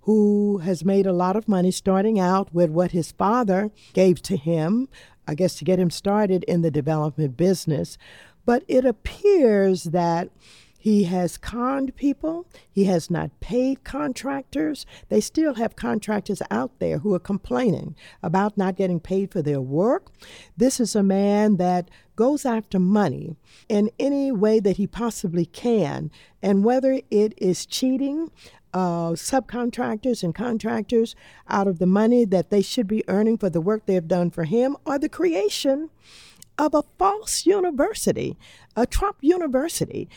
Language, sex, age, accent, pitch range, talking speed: English, female, 50-69, American, 185-250 Hz, 155 wpm